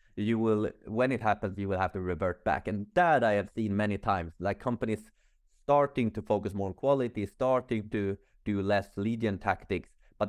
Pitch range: 90-115 Hz